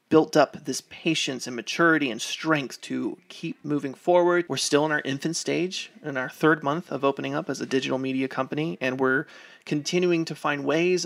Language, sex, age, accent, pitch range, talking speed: English, male, 30-49, American, 135-160 Hz, 195 wpm